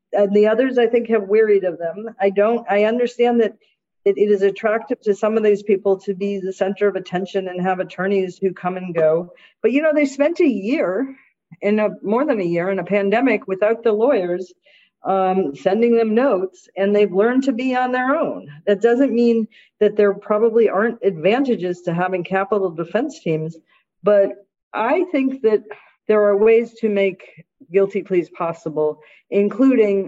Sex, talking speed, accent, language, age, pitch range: female, 185 wpm, American, English, 50-69, 175-220 Hz